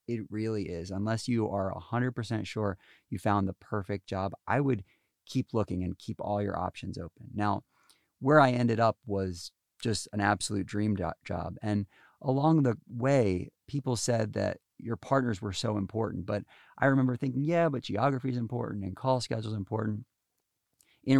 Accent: American